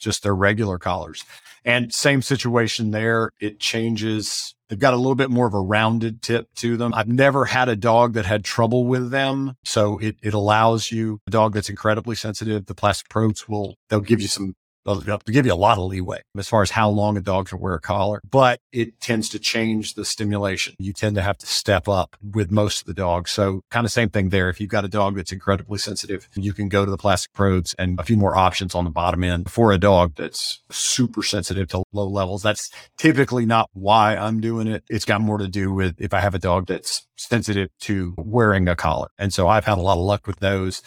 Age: 50-69